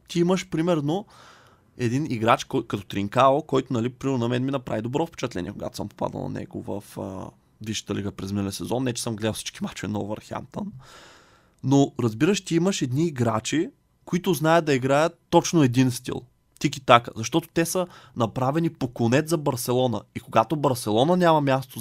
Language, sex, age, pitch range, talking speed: Bulgarian, male, 20-39, 115-145 Hz, 180 wpm